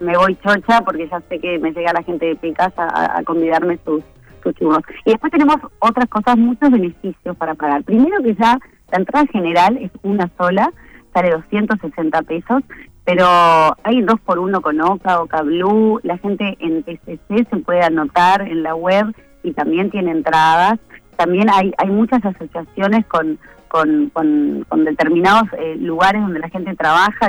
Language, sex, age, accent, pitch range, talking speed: Spanish, female, 30-49, Argentinian, 165-210 Hz, 175 wpm